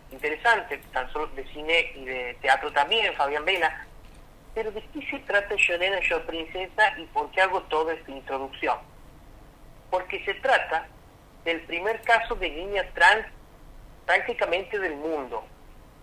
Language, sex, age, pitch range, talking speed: Spanish, male, 40-59, 160-235 Hz, 145 wpm